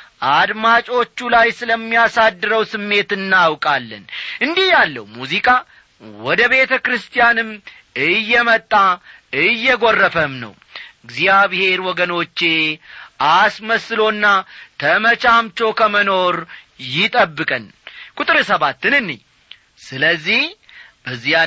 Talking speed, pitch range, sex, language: 60 wpm, 180-245 Hz, male, Amharic